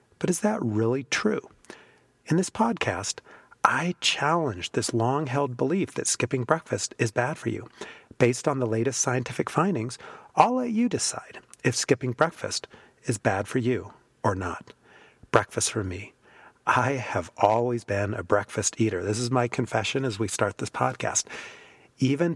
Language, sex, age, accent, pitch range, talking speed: English, male, 40-59, American, 115-155 Hz, 160 wpm